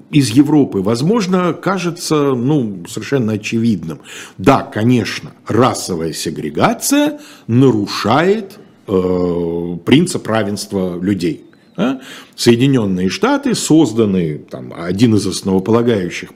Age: 50-69